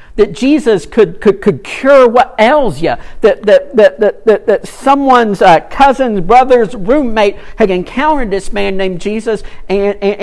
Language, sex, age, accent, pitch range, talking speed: English, male, 50-69, American, 150-230 Hz, 165 wpm